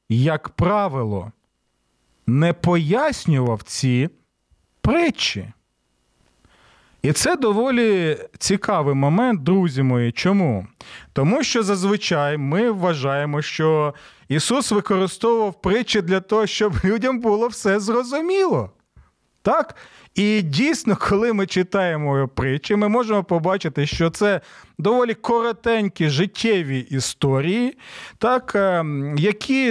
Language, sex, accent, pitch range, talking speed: Ukrainian, male, native, 145-205 Hz, 100 wpm